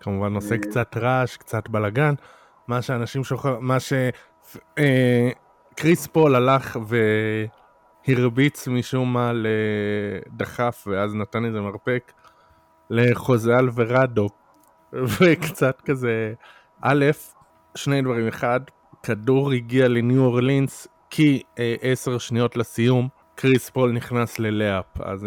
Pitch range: 110-130 Hz